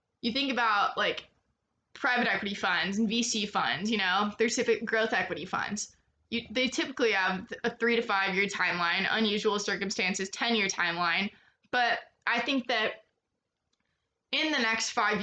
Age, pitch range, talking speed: 20-39, 200-235 Hz, 160 wpm